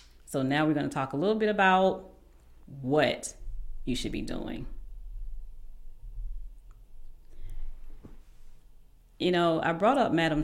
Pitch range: 125-165 Hz